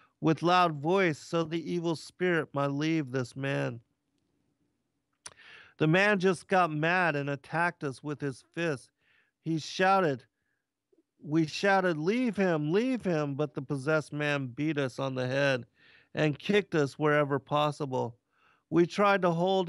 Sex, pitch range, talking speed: male, 140-170 Hz, 145 wpm